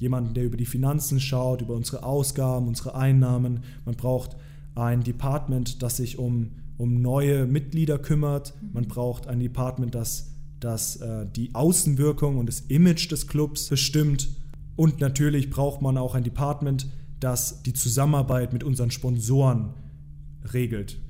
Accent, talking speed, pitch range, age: German, 145 wpm, 120-140 Hz, 20-39